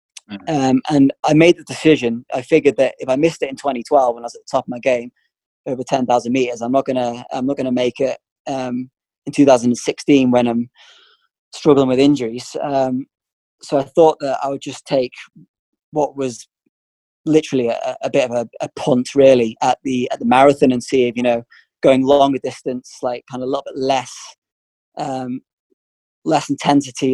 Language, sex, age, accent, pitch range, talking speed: English, male, 20-39, British, 125-145 Hz, 185 wpm